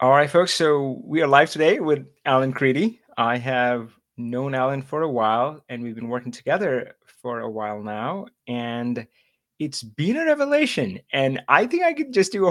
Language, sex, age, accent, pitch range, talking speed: English, male, 30-49, American, 120-165 Hz, 190 wpm